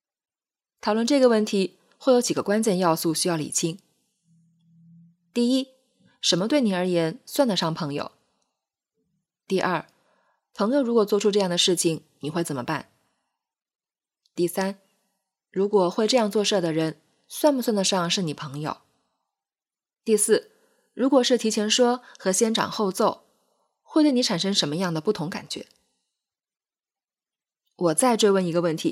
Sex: female